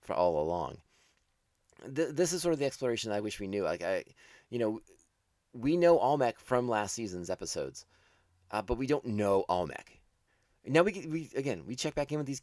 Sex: male